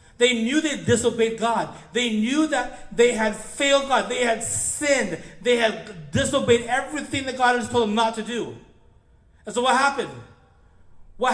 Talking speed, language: 170 wpm, English